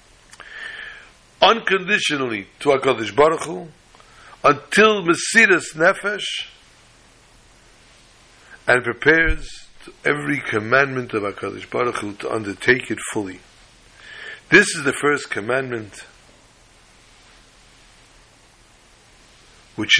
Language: English